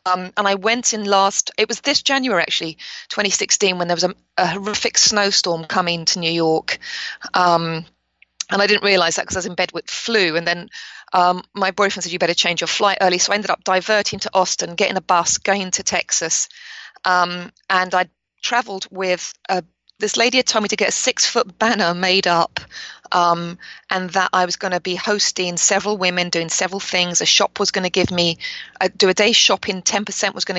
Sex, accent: female, British